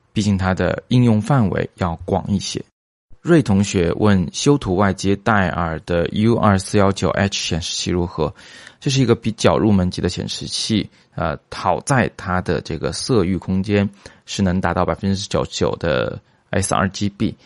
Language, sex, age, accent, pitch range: Chinese, male, 20-39, native, 90-105 Hz